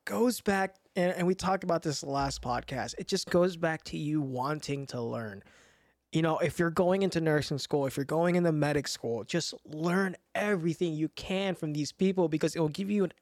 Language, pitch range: English, 155-200 Hz